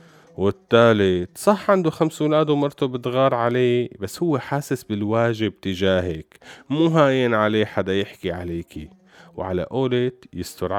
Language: Arabic